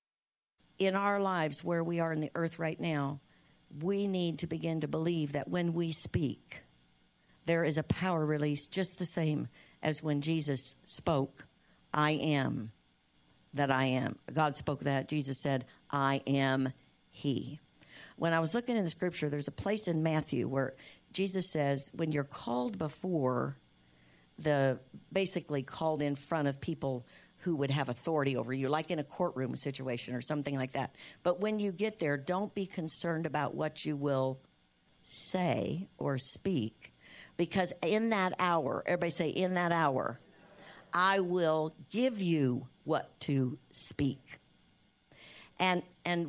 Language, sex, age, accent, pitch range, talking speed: English, female, 60-79, American, 140-180 Hz, 155 wpm